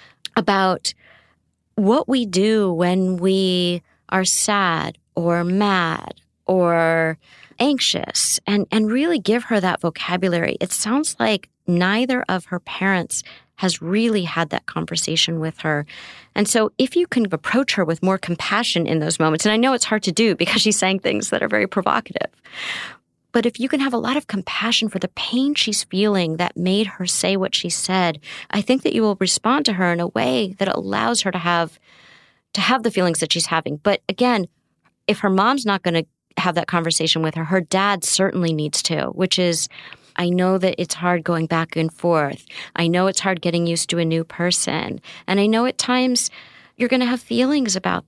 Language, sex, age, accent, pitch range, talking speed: English, female, 30-49, American, 170-215 Hz, 195 wpm